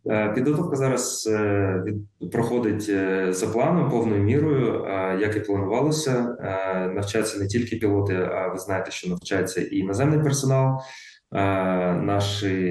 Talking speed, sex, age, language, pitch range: 115 wpm, male, 20-39, Ukrainian, 100-120 Hz